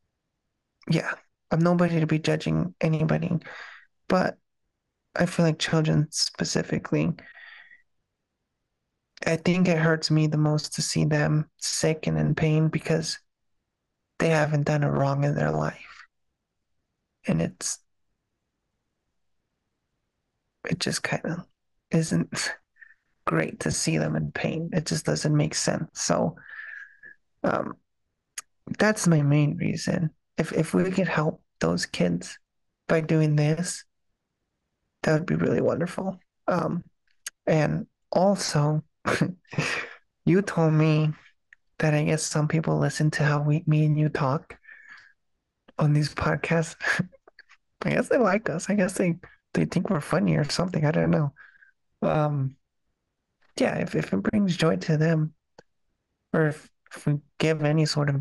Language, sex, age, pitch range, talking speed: English, male, 20-39, 150-175 Hz, 135 wpm